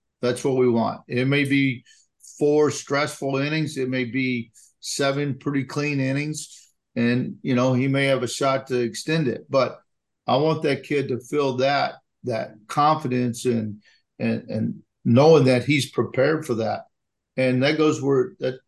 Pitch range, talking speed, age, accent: 120-140 Hz, 165 wpm, 50-69, American